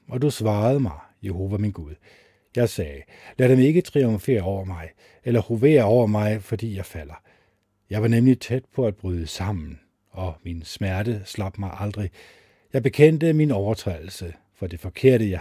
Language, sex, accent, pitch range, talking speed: Danish, male, native, 95-120 Hz, 170 wpm